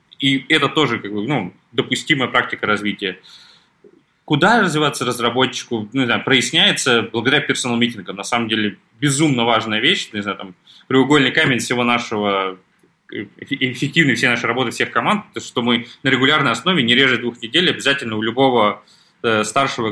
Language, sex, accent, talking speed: Russian, male, native, 155 wpm